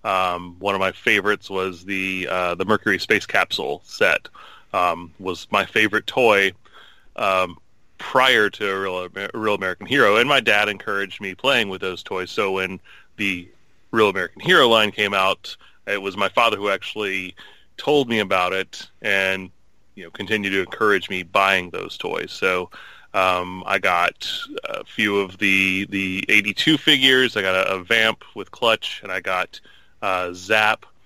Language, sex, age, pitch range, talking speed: English, male, 20-39, 95-115 Hz, 170 wpm